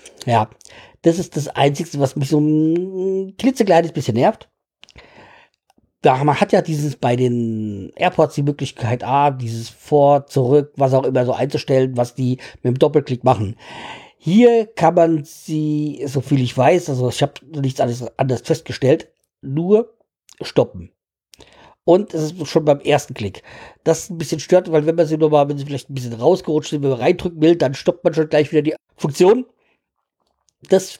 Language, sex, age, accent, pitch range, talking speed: German, male, 50-69, German, 140-180 Hz, 170 wpm